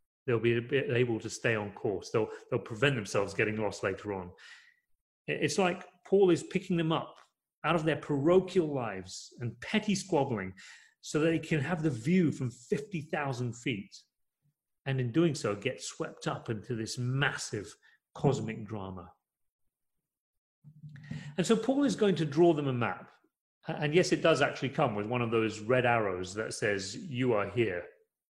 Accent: British